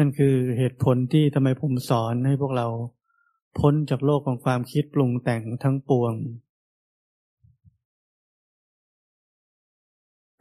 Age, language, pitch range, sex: 20-39, Thai, 120-140 Hz, male